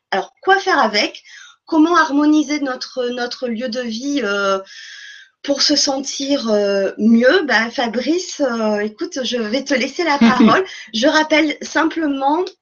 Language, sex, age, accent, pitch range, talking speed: French, female, 20-39, French, 245-315 Hz, 145 wpm